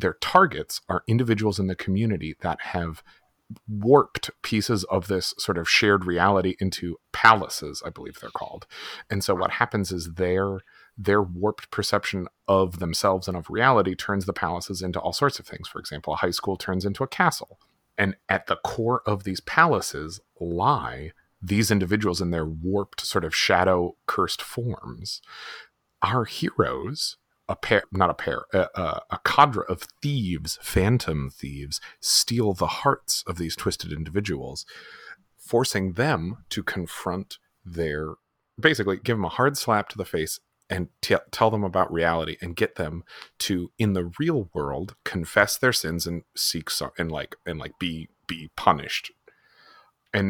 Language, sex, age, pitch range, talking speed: English, male, 30-49, 85-110 Hz, 160 wpm